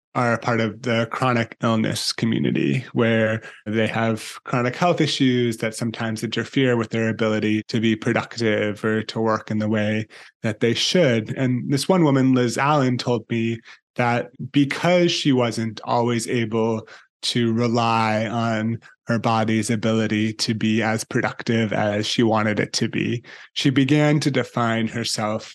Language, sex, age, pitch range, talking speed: English, male, 20-39, 110-125 Hz, 155 wpm